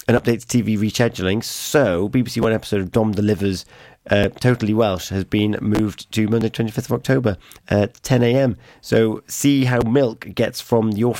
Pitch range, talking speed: 100-125 Hz, 170 wpm